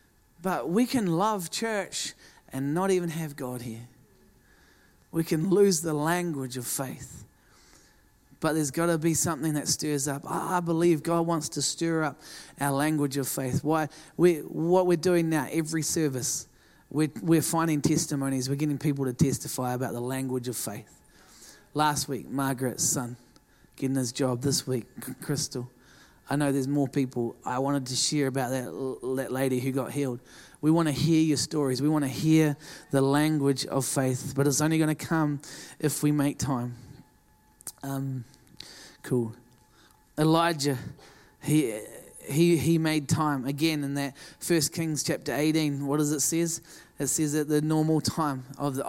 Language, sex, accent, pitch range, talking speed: English, male, Australian, 135-160 Hz, 170 wpm